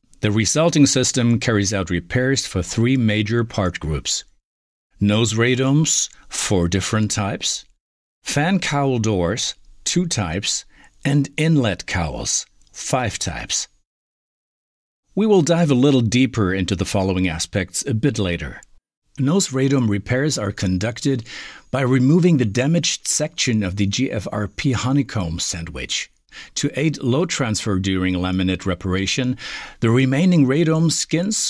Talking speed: 120 wpm